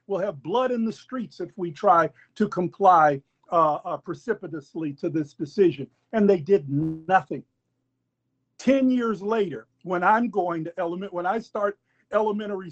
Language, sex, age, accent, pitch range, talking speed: English, male, 50-69, American, 165-220 Hz, 155 wpm